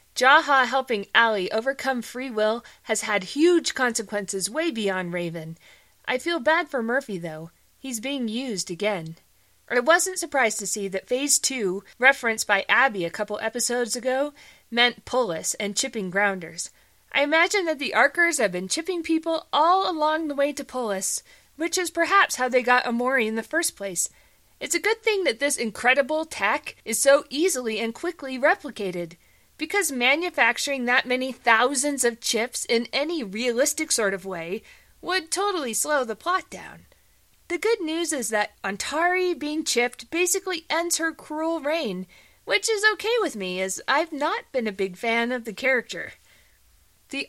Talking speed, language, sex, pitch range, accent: 165 wpm, English, female, 220-315 Hz, American